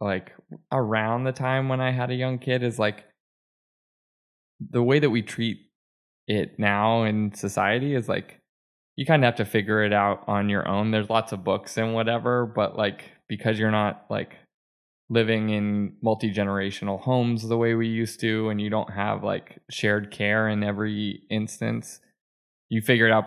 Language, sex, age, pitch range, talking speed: English, male, 20-39, 105-125 Hz, 180 wpm